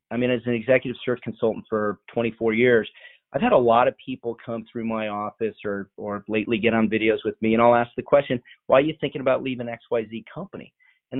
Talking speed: 230 wpm